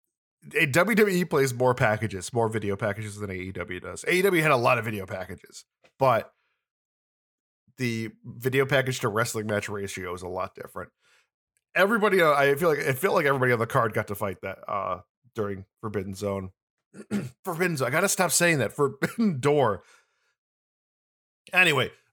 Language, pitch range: English, 105-145 Hz